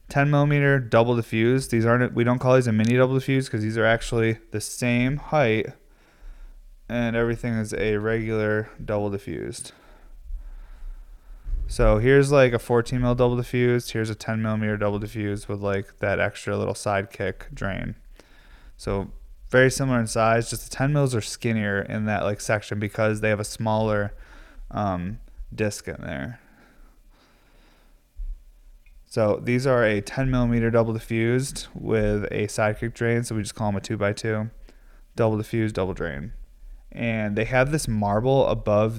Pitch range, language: 105-125 Hz, English